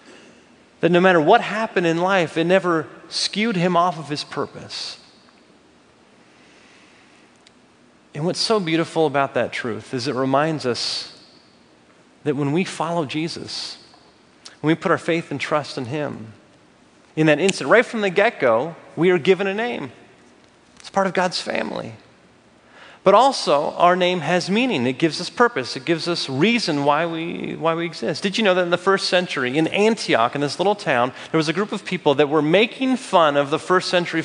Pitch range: 160-205 Hz